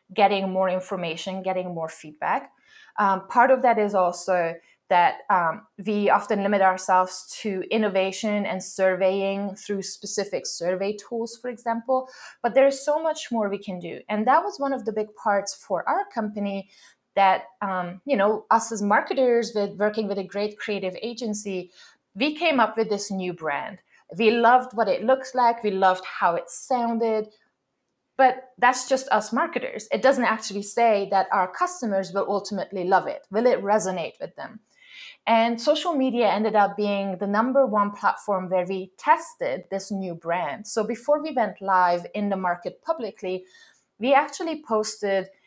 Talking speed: 170 wpm